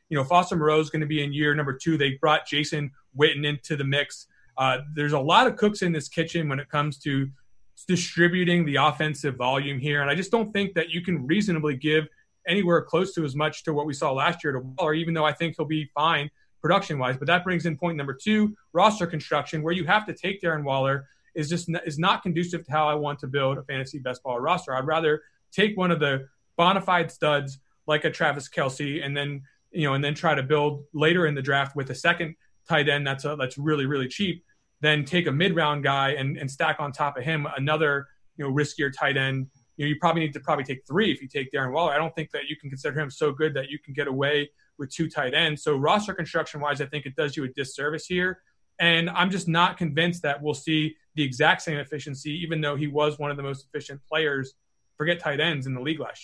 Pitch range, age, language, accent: 140-165 Hz, 30-49, English, American